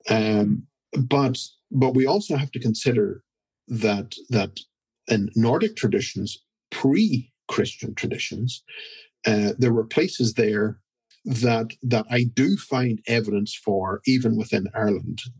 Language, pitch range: English, 110-130 Hz